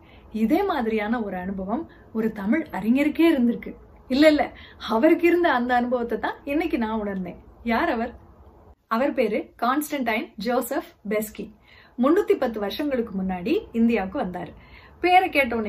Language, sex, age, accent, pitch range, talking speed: Tamil, female, 30-49, native, 215-285 Hz, 45 wpm